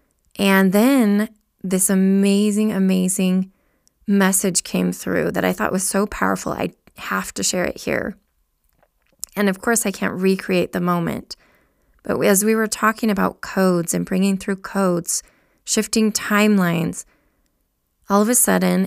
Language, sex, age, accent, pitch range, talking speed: English, female, 20-39, American, 180-205 Hz, 145 wpm